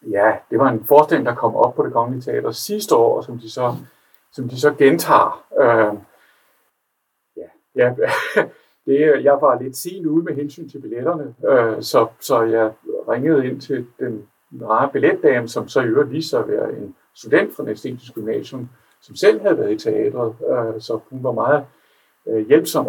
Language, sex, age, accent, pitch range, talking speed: Danish, male, 60-79, native, 115-155 Hz, 180 wpm